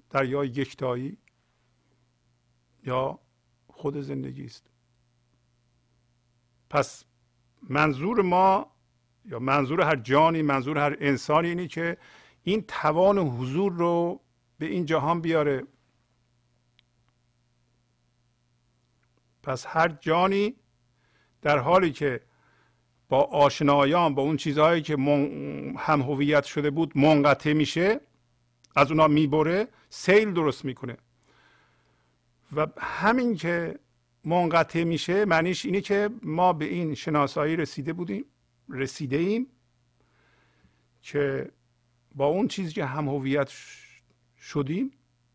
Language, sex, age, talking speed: Persian, male, 50-69, 100 wpm